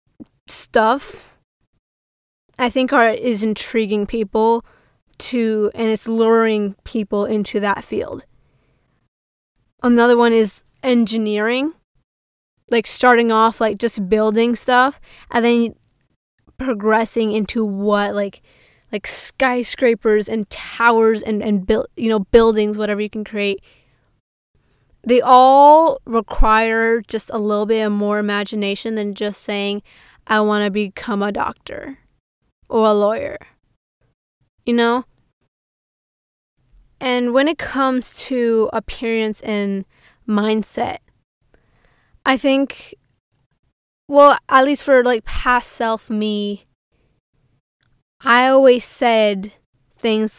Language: English